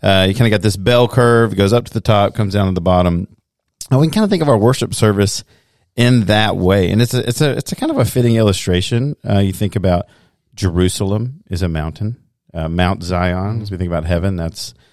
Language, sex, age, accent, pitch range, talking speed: English, male, 40-59, American, 95-115 Hz, 240 wpm